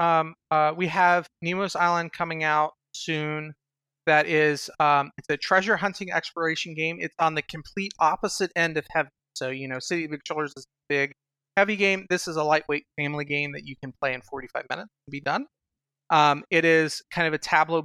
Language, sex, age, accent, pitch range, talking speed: English, male, 30-49, American, 140-165 Hz, 200 wpm